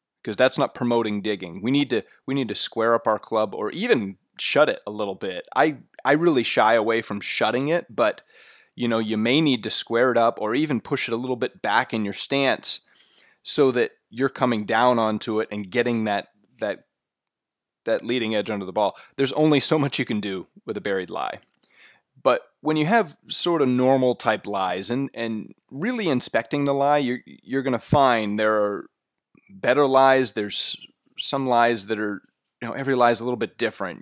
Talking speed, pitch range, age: 205 wpm, 105-130 Hz, 30-49